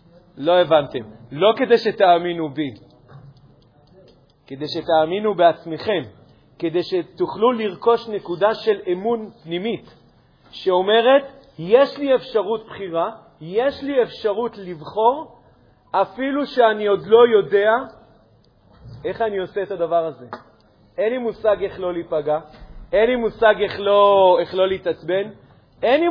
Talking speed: 110 wpm